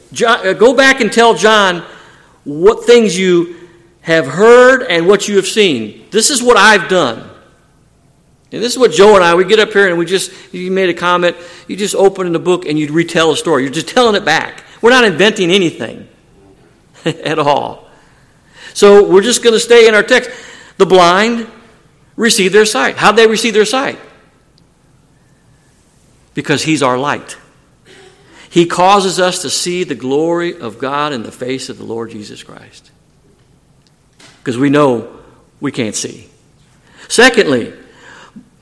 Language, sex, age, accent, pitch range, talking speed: English, male, 50-69, American, 150-220 Hz, 165 wpm